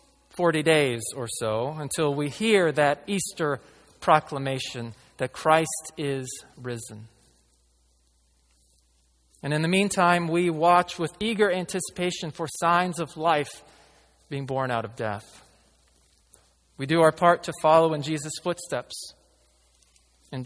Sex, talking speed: male, 125 wpm